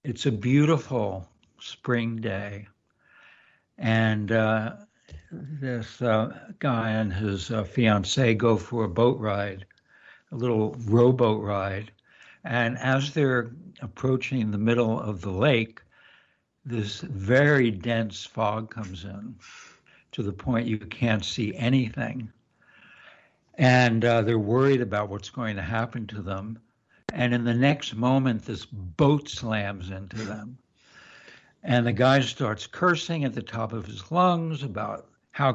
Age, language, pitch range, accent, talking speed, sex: 60-79, English, 110-130 Hz, American, 135 wpm, male